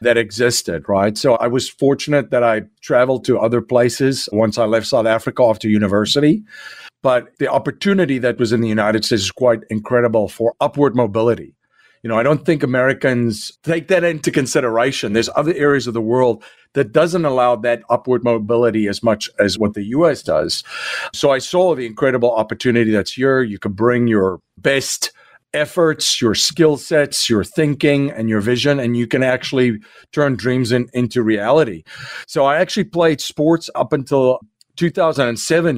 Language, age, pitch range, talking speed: English, 50-69, 115-140 Hz, 170 wpm